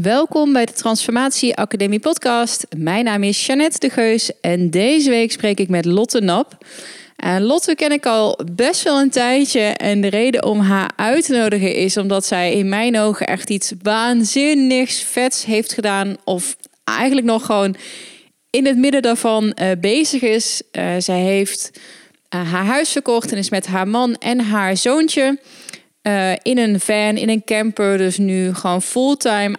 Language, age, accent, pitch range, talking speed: Dutch, 20-39, Dutch, 195-245 Hz, 170 wpm